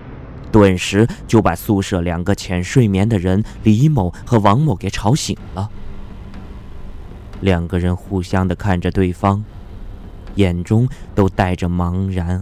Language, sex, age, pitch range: Chinese, male, 20-39, 85-105 Hz